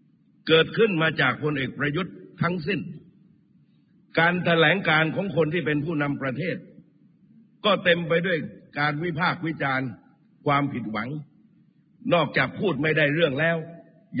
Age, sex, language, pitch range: 60-79, male, Thai, 155-200 Hz